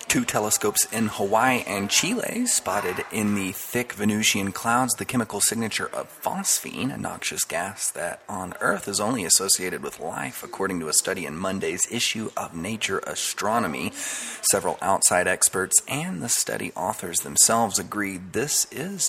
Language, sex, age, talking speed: English, male, 30-49, 155 wpm